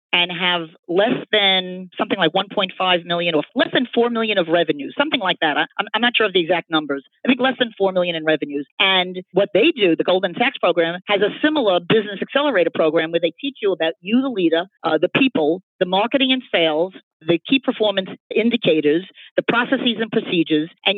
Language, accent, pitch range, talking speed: English, American, 170-235 Hz, 205 wpm